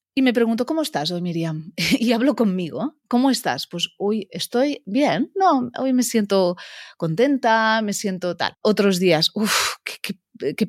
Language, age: Spanish, 30-49